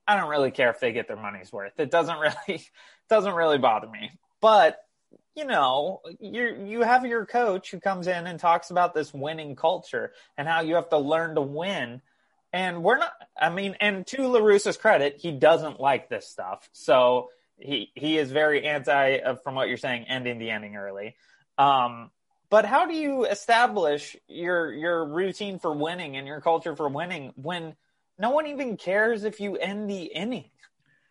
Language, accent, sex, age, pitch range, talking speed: English, American, male, 30-49, 150-210 Hz, 190 wpm